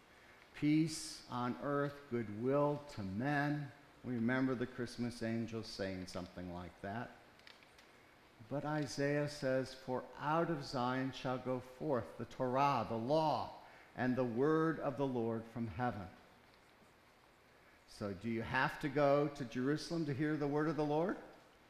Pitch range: 120-150 Hz